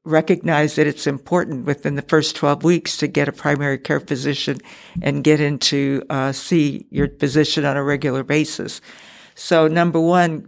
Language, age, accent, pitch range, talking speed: English, 60-79, American, 145-165 Hz, 165 wpm